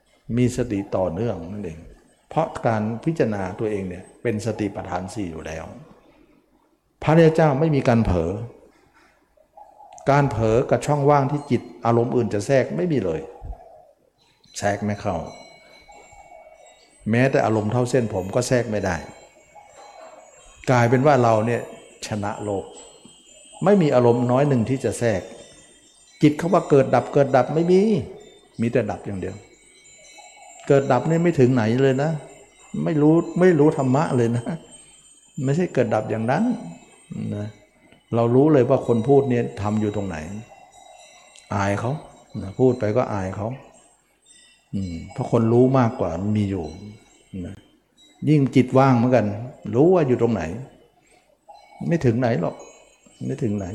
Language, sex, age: Thai, male, 60-79